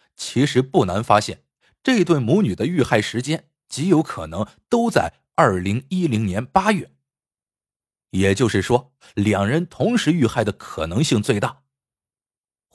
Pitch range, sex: 100-160 Hz, male